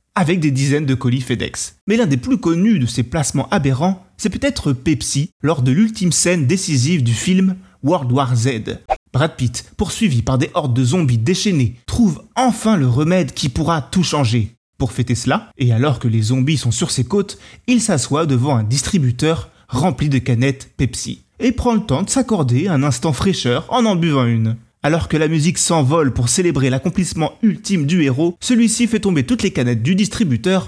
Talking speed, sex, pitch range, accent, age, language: 190 wpm, male, 125-185 Hz, French, 30-49, French